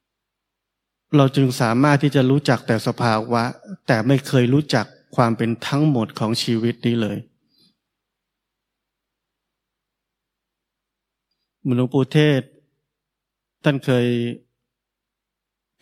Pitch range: 115-135 Hz